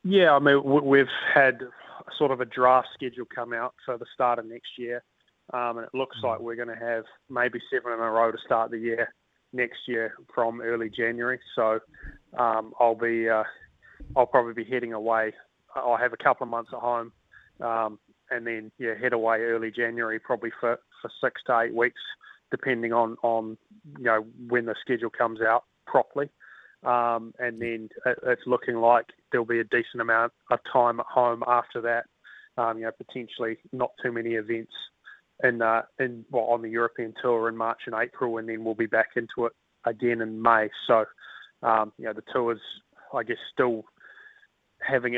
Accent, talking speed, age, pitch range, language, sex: Australian, 195 wpm, 30-49, 115-125 Hz, English, male